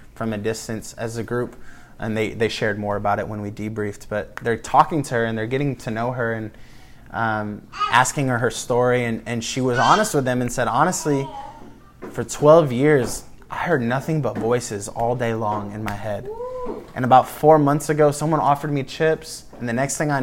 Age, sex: 20-39, male